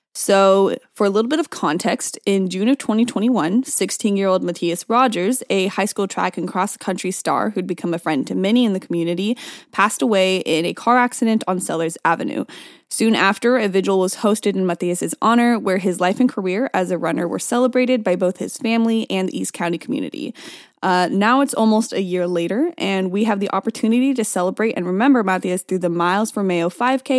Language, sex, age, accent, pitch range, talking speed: English, female, 10-29, American, 185-250 Hz, 200 wpm